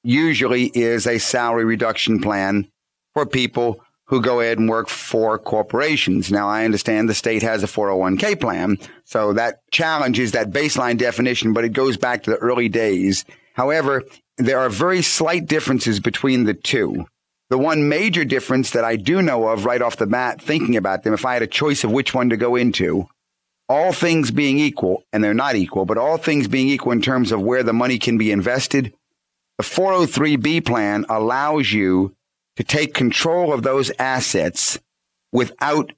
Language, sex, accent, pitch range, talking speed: English, male, American, 110-135 Hz, 180 wpm